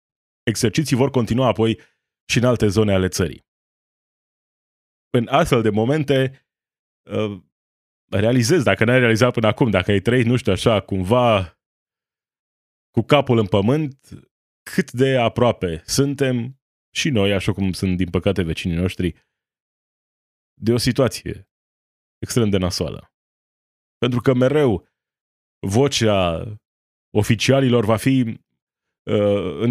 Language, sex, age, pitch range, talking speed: Romanian, male, 20-39, 100-140 Hz, 115 wpm